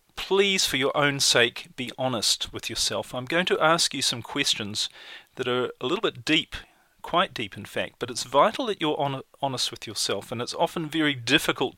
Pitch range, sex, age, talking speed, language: 120-155 Hz, male, 40-59, 200 wpm, English